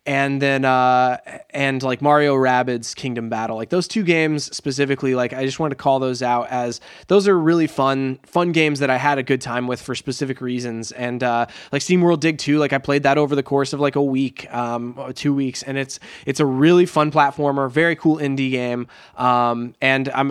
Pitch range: 125-155 Hz